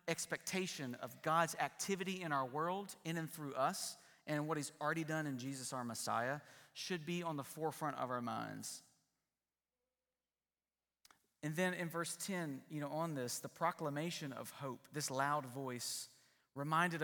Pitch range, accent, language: 125-160 Hz, American, English